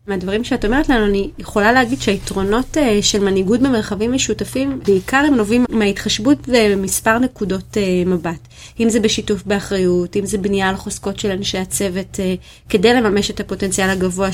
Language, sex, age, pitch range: Hebrew, female, 30-49, 200-255 Hz